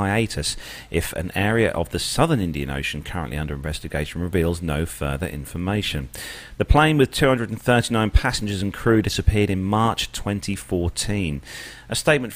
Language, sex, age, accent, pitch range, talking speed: English, male, 40-59, British, 80-110 Hz, 140 wpm